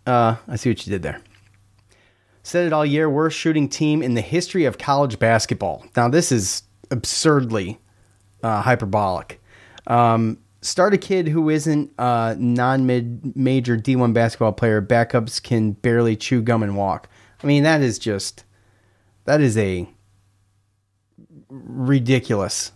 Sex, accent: male, American